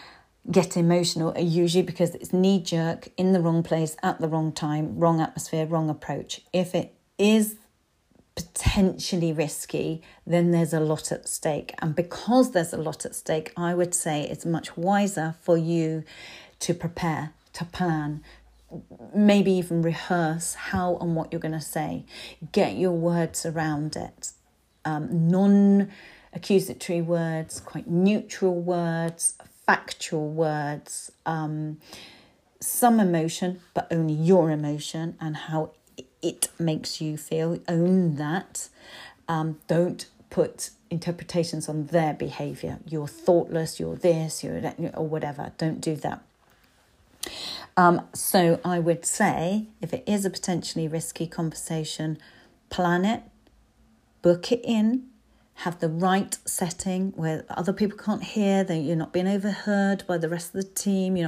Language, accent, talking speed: English, British, 140 wpm